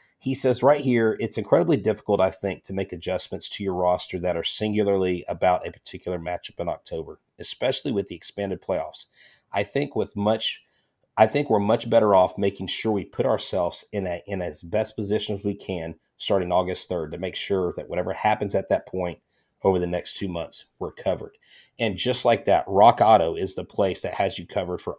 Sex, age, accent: male, 30-49, American